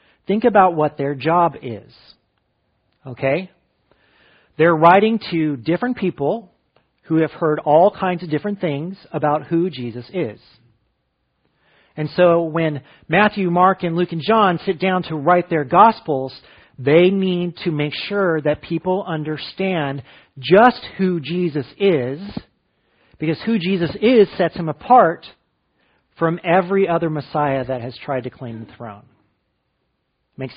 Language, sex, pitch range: English, male, 145-185 Hz